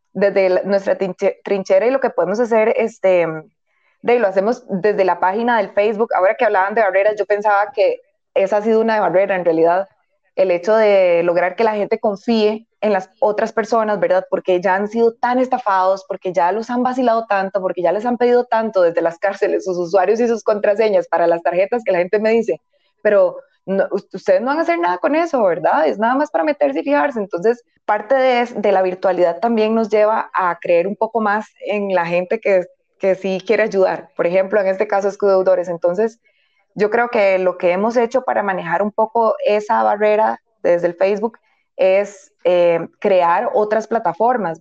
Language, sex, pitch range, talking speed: Spanish, female, 185-225 Hz, 200 wpm